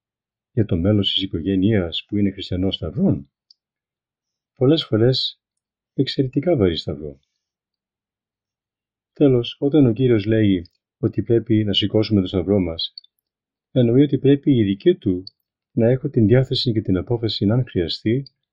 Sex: male